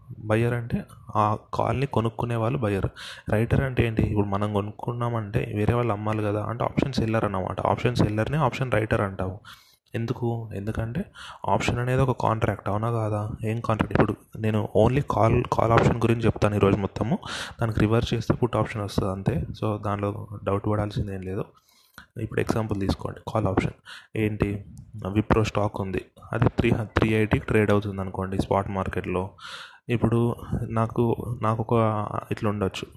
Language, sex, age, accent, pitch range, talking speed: Telugu, male, 20-39, native, 105-115 Hz, 150 wpm